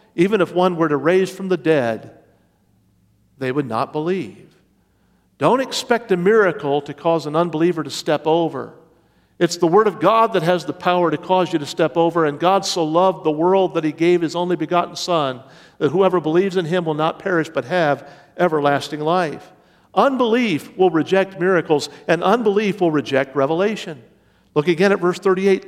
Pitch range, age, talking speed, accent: 160-205 Hz, 50-69, 180 wpm, American